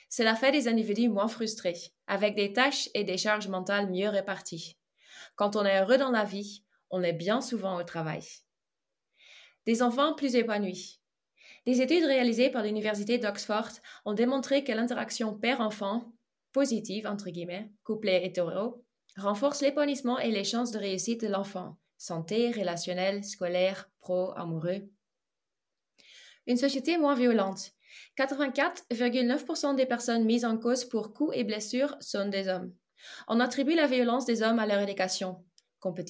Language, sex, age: French, female, 20-39